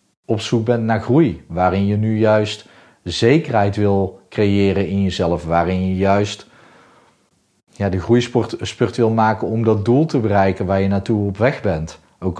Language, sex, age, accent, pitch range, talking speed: Dutch, male, 40-59, Dutch, 95-115 Hz, 160 wpm